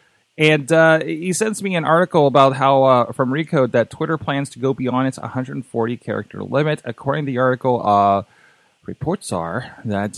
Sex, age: male, 30-49